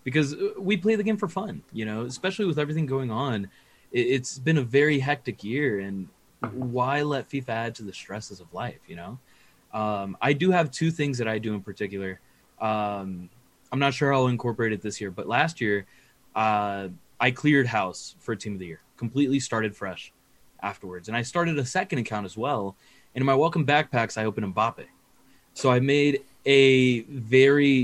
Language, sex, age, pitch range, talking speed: English, male, 20-39, 105-135 Hz, 195 wpm